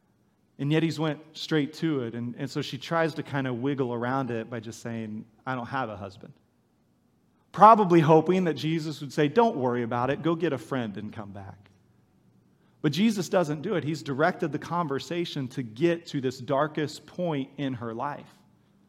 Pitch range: 120-160 Hz